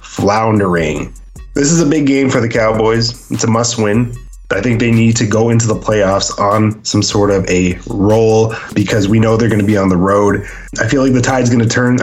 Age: 20-39